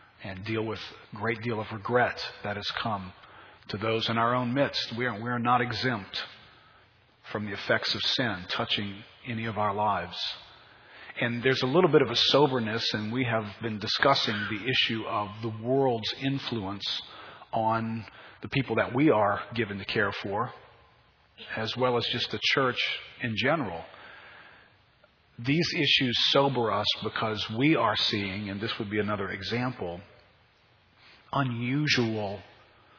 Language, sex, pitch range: English, male, 100-120 Hz